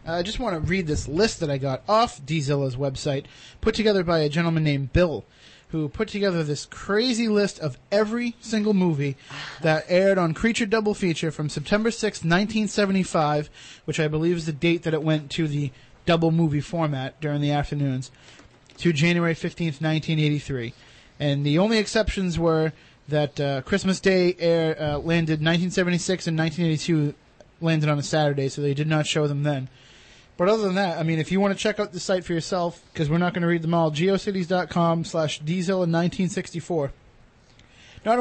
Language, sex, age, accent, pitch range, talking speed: English, male, 30-49, American, 145-185 Hz, 185 wpm